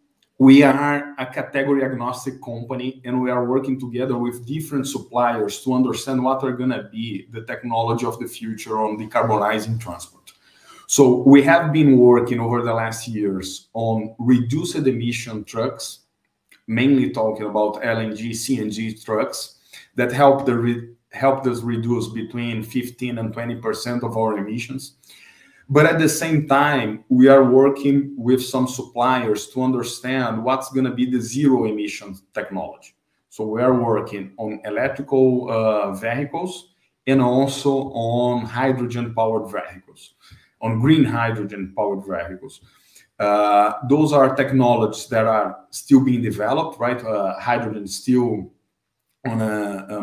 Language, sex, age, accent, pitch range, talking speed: English, male, 20-39, Brazilian, 110-135 Hz, 145 wpm